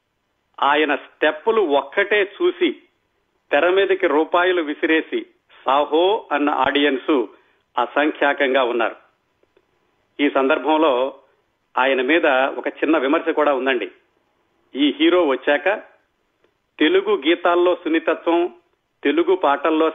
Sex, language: male, Telugu